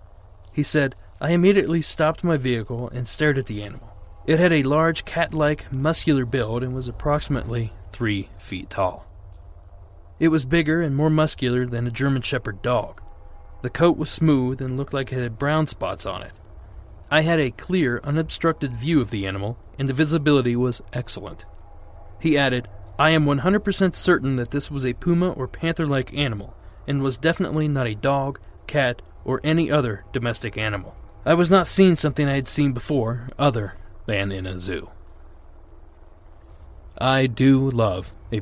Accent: American